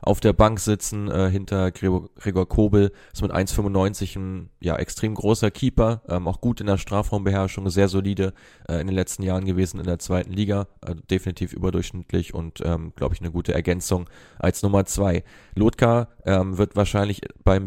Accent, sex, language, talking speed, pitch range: German, male, German, 175 wpm, 90-105 Hz